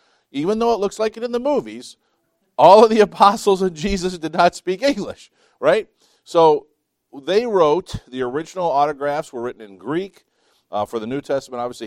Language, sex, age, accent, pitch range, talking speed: English, male, 50-69, American, 120-160 Hz, 180 wpm